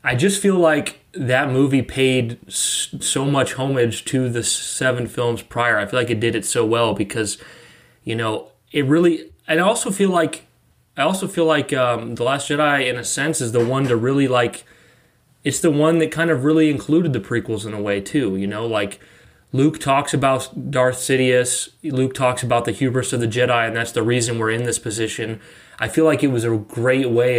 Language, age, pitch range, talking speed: English, 20-39, 115-140 Hz, 200 wpm